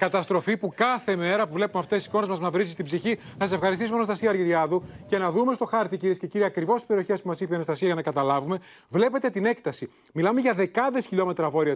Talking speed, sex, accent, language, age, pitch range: 230 wpm, male, native, Greek, 30-49, 170-225 Hz